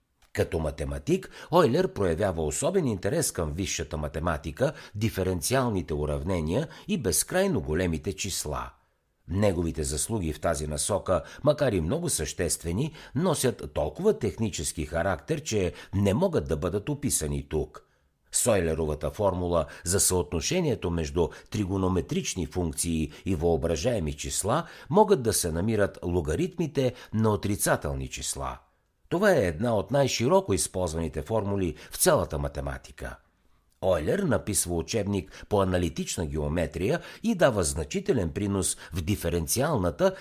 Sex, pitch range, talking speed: male, 80-110 Hz, 115 wpm